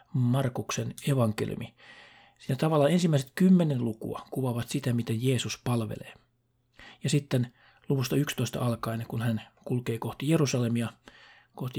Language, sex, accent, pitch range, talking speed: Finnish, male, native, 120-140 Hz, 115 wpm